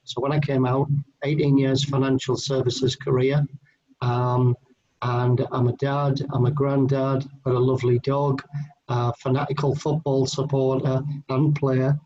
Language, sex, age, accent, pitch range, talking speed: English, male, 40-59, British, 130-145 Hz, 135 wpm